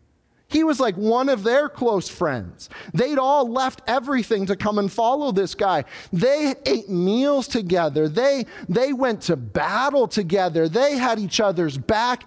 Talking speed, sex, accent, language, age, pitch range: 160 wpm, male, American, English, 40-59, 185-265 Hz